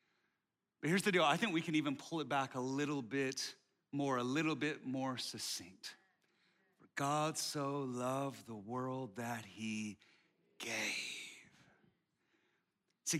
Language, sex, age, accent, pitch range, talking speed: English, male, 30-49, American, 165-280 Hz, 135 wpm